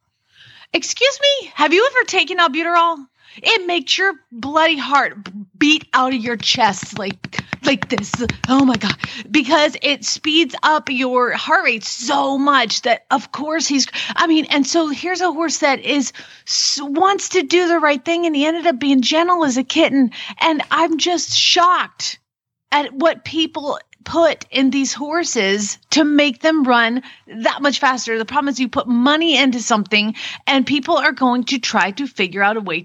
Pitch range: 245-315 Hz